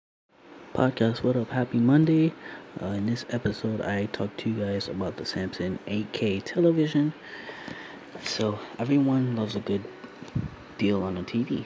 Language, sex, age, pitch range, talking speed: English, male, 30-49, 100-130 Hz, 145 wpm